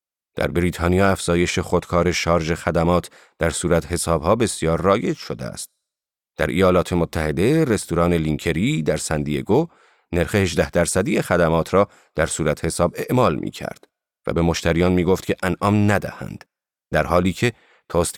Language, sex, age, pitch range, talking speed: Persian, male, 40-59, 85-125 Hz, 140 wpm